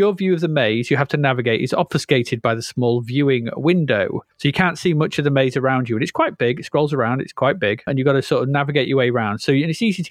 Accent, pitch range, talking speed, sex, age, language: British, 125-175 Hz, 305 wpm, male, 30-49, English